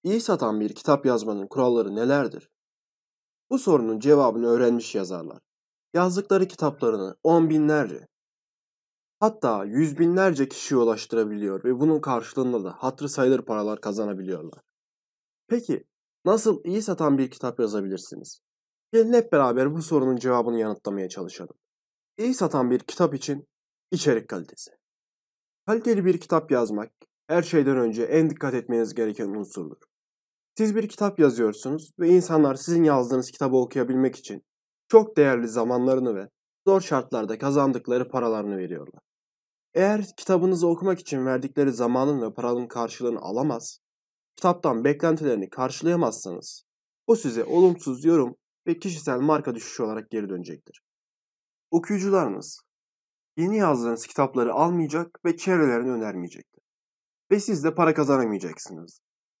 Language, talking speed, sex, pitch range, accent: Turkish, 120 wpm, male, 120-170 Hz, native